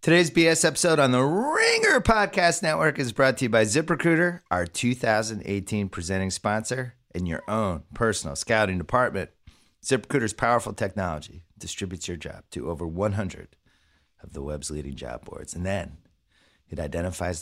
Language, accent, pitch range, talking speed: English, American, 90-120 Hz, 150 wpm